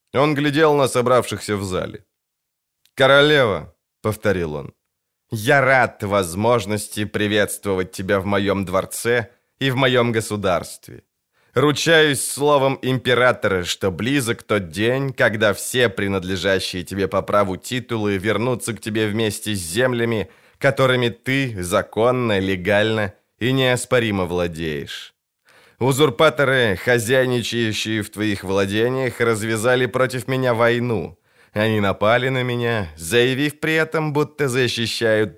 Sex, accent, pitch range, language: male, native, 100-130 Hz, Ukrainian